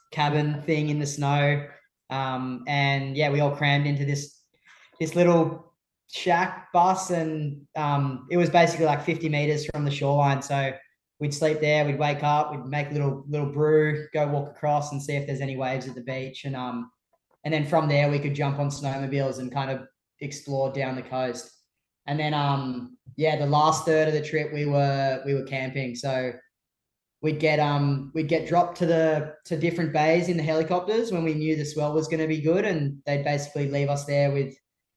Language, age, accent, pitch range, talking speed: English, 20-39, Australian, 135-155 Hz, 200 wpm